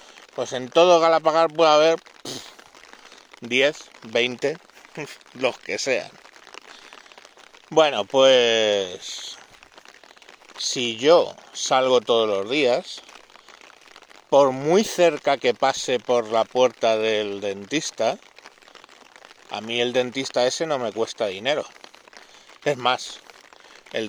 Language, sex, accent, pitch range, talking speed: Spanish, male, Spanish, 120-165 Hz, 100 wpm